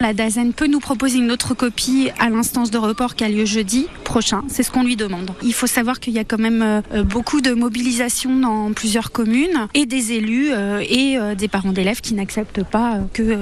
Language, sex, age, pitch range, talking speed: French, female, 30-49, 205-250 Hz, 210 wpm